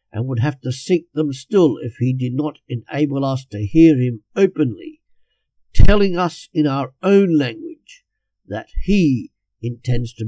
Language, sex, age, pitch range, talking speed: English, male, 50-69, 120-160 Hz, 160 wpm